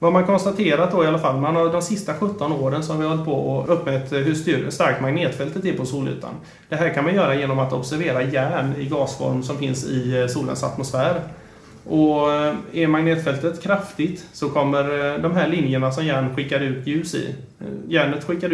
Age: 30-49